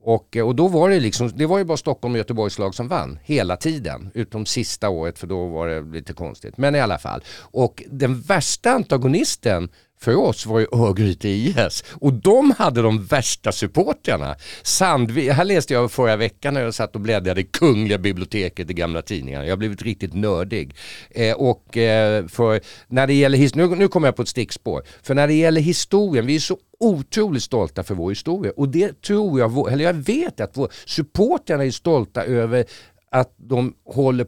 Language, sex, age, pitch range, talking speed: Swedish, male, 50-69, 100-140 Hz, 195 wpm